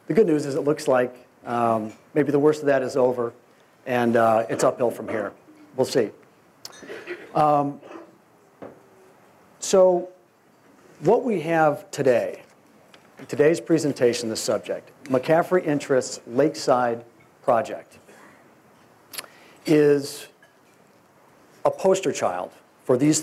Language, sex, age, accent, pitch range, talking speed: English, male, 40-59, American, 125-155 Hz, 110 wpm